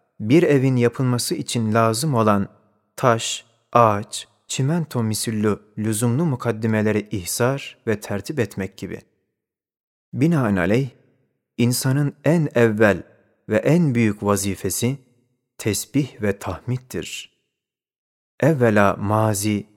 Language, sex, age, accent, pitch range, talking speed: Turkish, male, 30-49, native, 105-130 Hz, 90 wpm